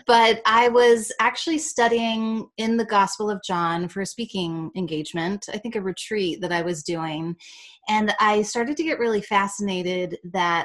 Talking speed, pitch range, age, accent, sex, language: 170 wpm, 180-235 Hz, 30-49, American, female, English